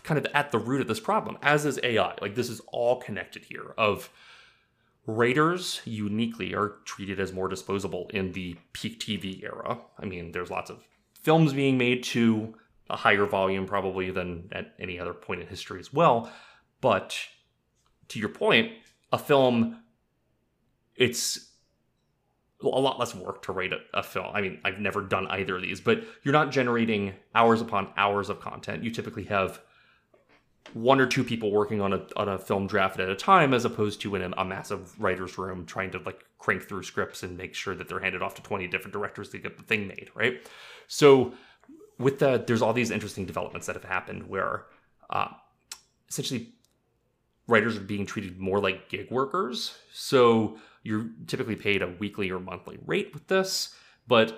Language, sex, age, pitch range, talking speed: English, male, 30-49, 95-130 Hz, 185 wpm